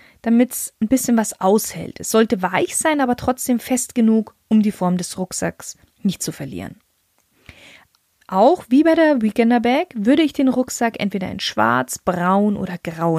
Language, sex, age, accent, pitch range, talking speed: German, female, 20-39, German, 195-255 Hz, 175 wpm